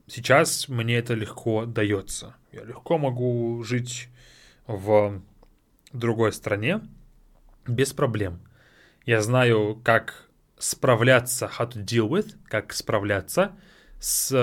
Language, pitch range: English, 115-150 Hz